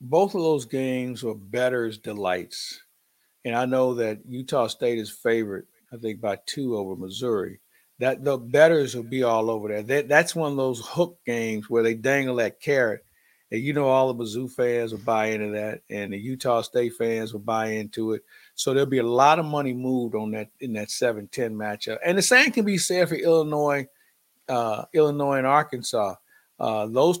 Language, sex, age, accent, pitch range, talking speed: English, male, 50-69, American, 115-140 Hz, 195 wpm